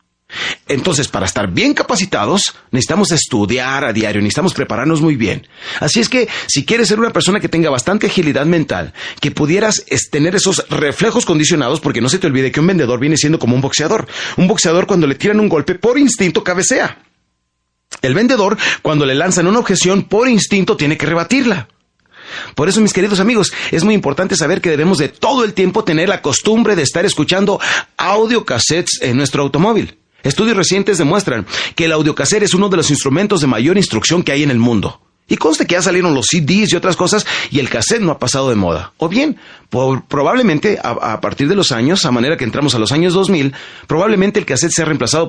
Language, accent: Spanish, Mexican